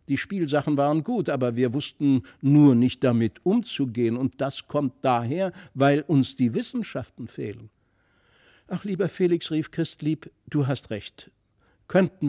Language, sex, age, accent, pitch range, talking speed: German, male, 60-79, German, 120-160 Hz, 140 wpm